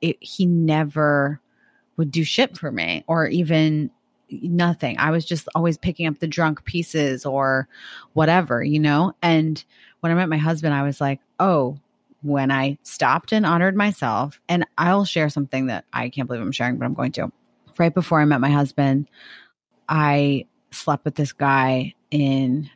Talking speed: 170 wpm